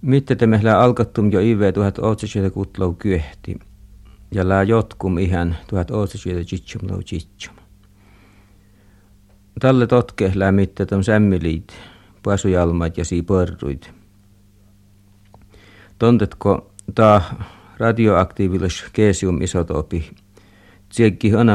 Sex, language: male, Finnish